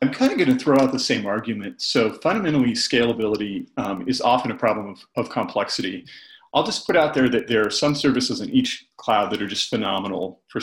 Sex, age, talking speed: male, 40-59, 215 wpm